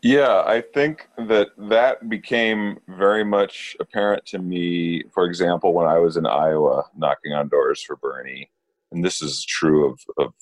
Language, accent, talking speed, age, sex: English, American, 165 wpm, 40-59, male